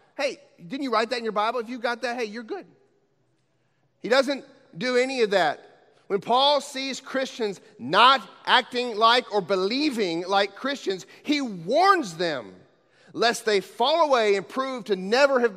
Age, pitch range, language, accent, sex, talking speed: 40-59, 190-240 Hz, English, American, male, 170 wpm